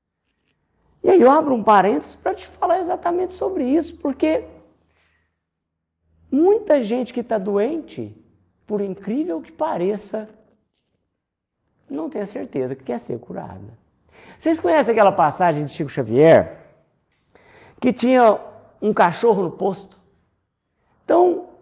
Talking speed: 120 wpm